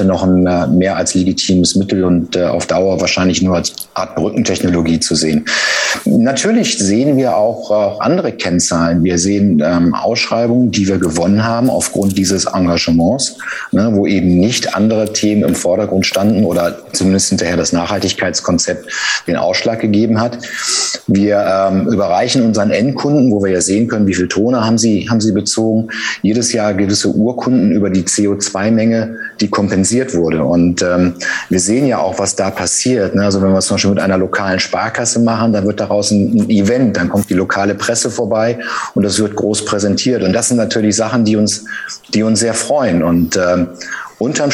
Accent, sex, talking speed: German, male, 175 wpm